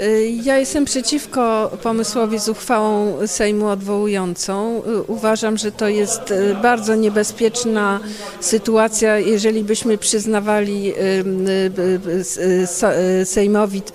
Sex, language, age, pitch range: female, Polish, 50-69, 190-225 Hz